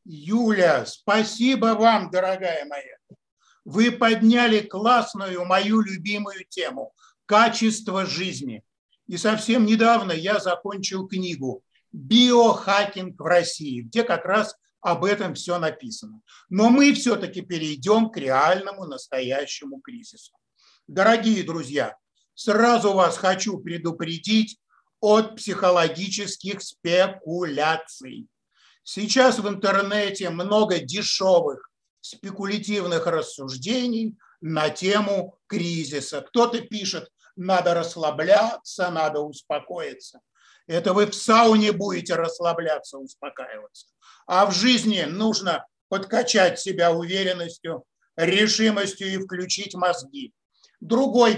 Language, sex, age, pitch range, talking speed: Russian, male, 50-69, 175-225 Hz, 95 wpm